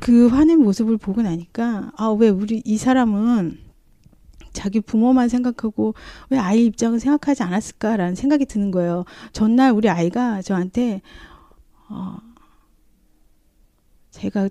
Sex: female